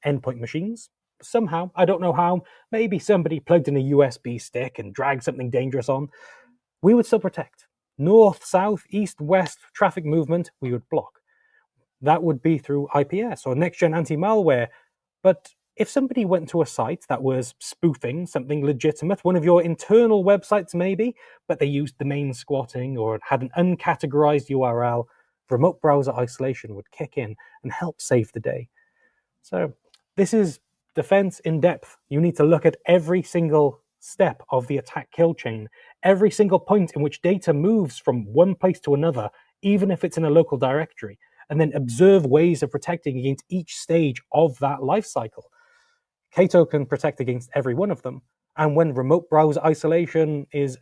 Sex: male